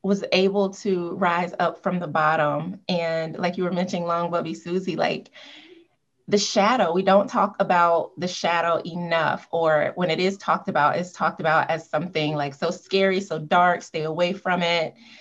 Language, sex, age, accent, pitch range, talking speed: English, female, 20-39, American, 160-190 Hz, 180 wpm